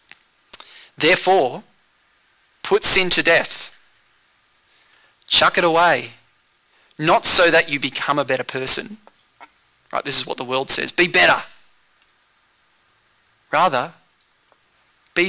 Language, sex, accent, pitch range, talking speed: English, male, Australian, 145-190 Hz, 105 wpm